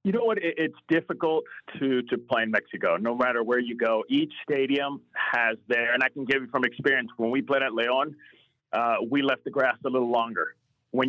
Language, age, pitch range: English, 40-59, 130-150 Hz